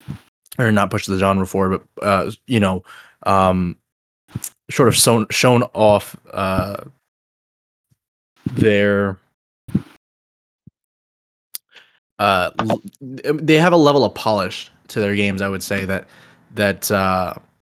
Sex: male